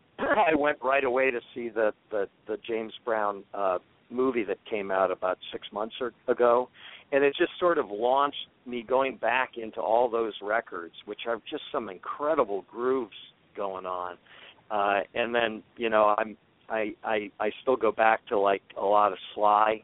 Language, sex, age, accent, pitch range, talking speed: English, male, 50-69, American, 105-130 Hz, 180 wpm